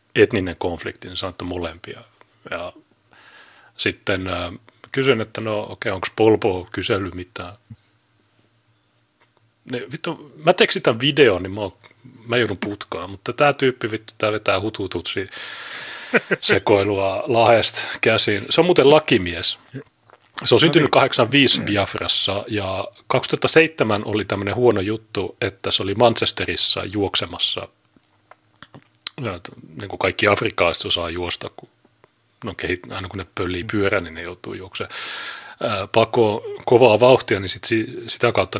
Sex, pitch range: male, 95-120 Hz